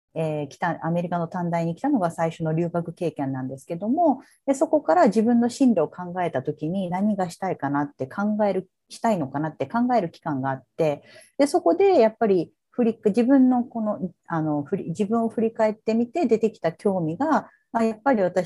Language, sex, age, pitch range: Japanese, female, 40-59, 165-240 Hz